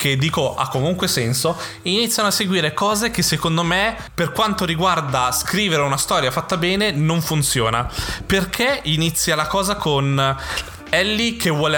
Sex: male